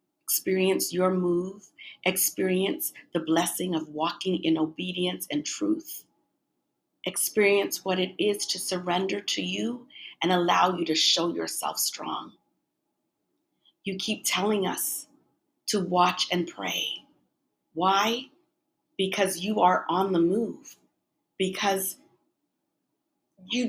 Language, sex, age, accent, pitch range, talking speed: English, female, 50-69, American, 185-245 Hz, 110 wpm